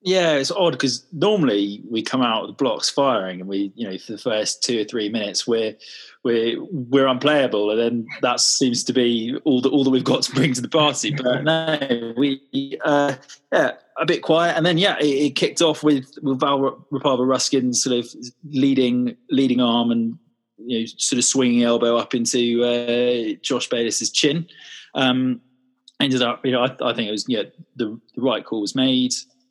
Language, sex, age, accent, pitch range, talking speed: English, male, 20-39, British, 115-145 Hz, 205 wpm